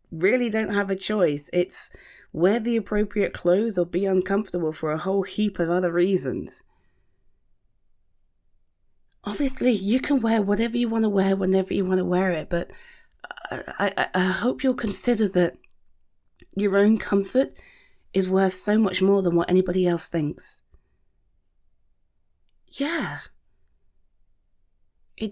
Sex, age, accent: female, 30-49, British